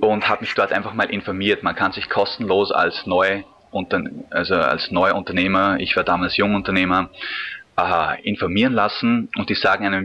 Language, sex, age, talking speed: German, male, 20-39, 160 wpm